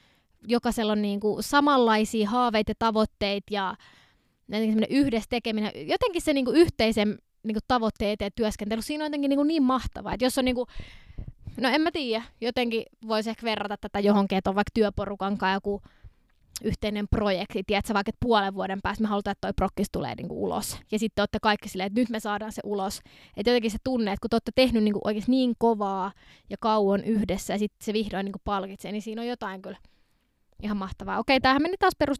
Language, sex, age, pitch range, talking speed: Finnish, female, 20-39, 205-250 Hz, 185 wpm